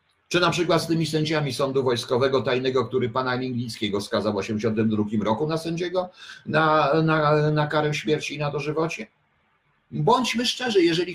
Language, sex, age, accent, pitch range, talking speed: Polish, male, 50-69, native, 110-165 Hz, 155 wpm